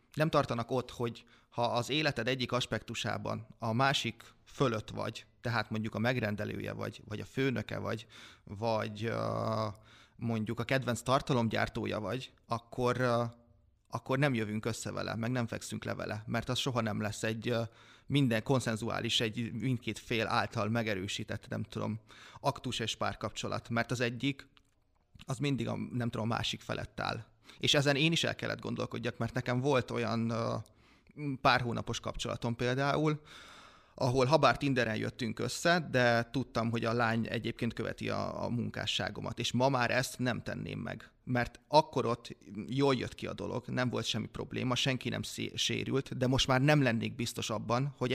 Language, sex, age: Hungarian, male, 20-39